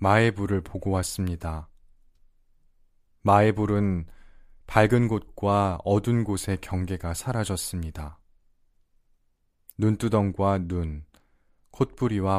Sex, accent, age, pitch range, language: male, native, 20-39, 80-100 Hz, Korean